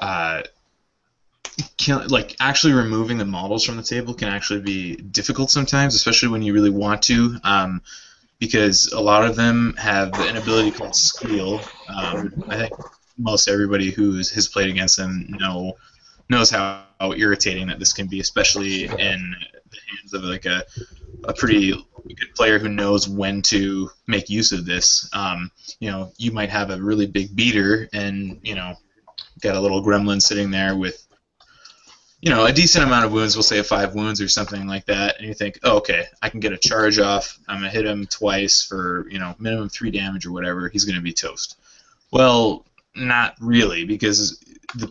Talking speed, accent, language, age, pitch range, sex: 190 wpm, American, English, 20-39, 95-110 Hz, male